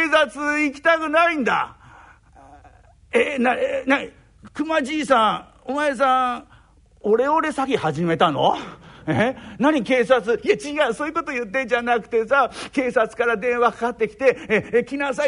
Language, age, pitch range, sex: Japanese, 50-69, 225-300 Hz, male